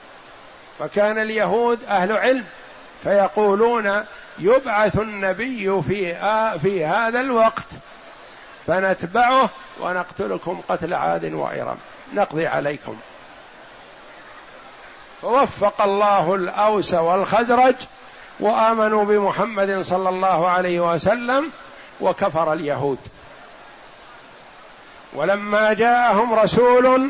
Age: 50-69